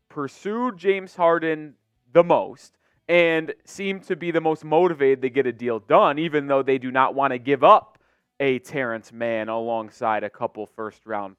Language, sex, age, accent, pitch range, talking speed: English, male, 20-39, American, 125-195 Hz, 175 wpm